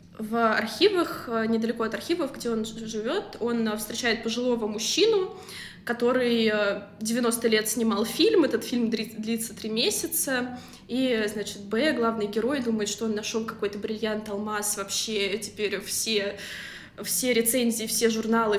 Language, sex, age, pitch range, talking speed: Russian, female, 20-39, 210-255 Hz, 130 wpm